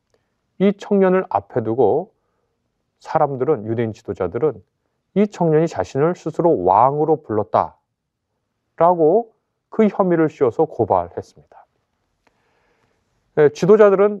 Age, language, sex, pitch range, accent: 40-59, Korean, male, 115-155 Hz, native